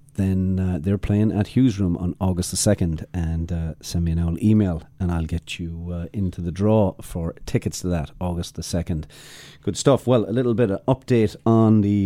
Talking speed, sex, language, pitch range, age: 215 wpm, male, English, 85-105 Hz, 40-59